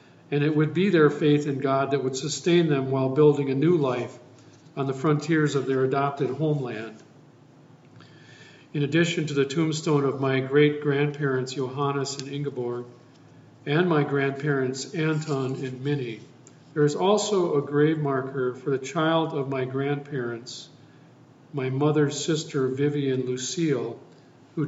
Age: 50-69